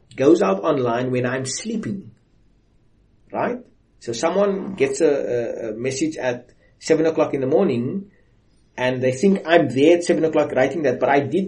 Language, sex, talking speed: English, male, 165 wpm